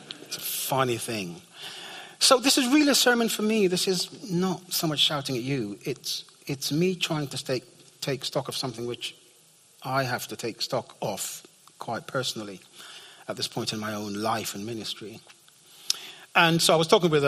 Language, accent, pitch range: English, British, 120-175 Hz